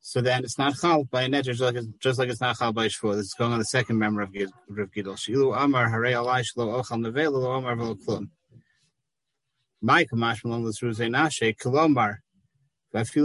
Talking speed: 100 wpm